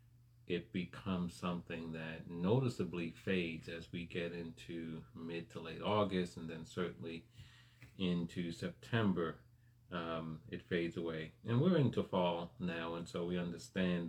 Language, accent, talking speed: English, American, 135 wpm